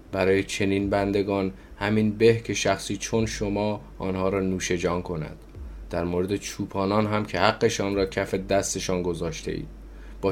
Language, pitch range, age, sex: Persian, 95-105 Hz, 20-39, male